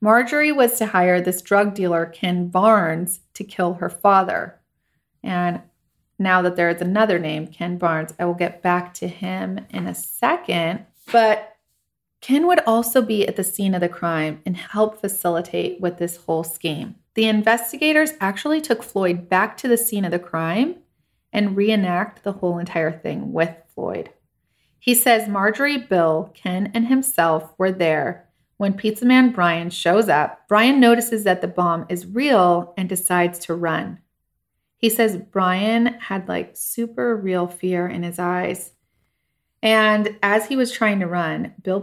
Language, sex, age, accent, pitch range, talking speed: English, female, 30-49, American, 170-220 Hz, 165 wpm